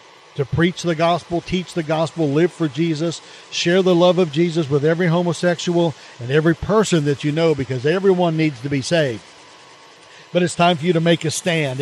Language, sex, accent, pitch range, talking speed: English, male, American, 145-175 Hz, 200 wpm